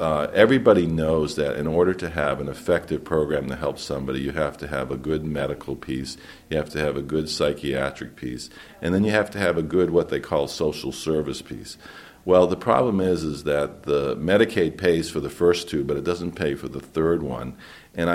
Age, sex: 50-69, male